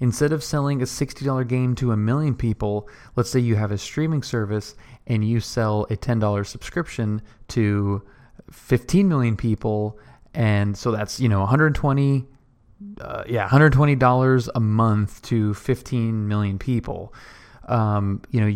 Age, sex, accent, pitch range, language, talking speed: 20-39, male, American, 105-120 Hz, English, 145 wpm